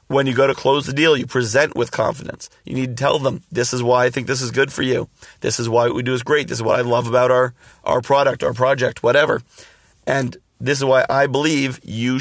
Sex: male